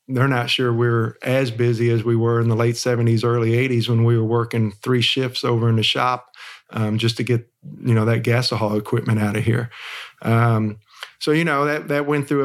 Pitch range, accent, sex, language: 115-125 Hz, American, male, English